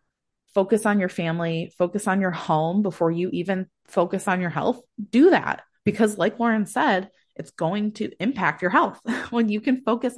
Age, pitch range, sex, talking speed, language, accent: 20-39, 160-200 Hz, female, 185 wpm, English, American